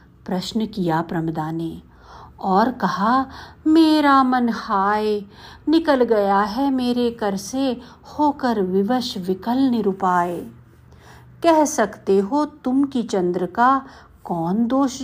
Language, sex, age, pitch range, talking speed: Hindi, female, 50-69, 195-290 Hz, 110 wpm